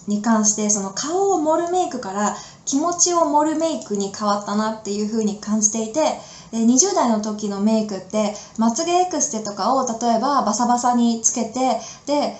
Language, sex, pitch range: Japanese, female, 205-290 Hz